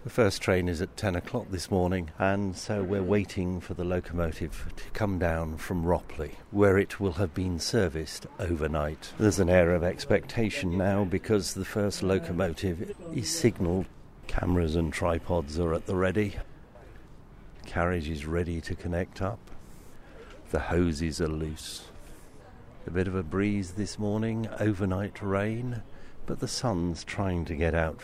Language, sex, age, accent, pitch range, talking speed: English, male, 60-79, British, 85-105 Hz, 155 wpm